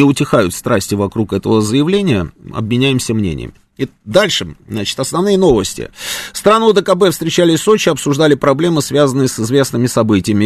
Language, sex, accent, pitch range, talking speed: Russian, male, native, 110-145 Hz, 130 wpm